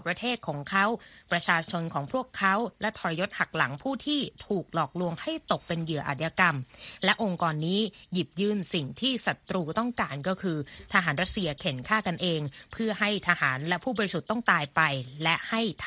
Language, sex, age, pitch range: Thai, female, 20-39, 170-220 Hz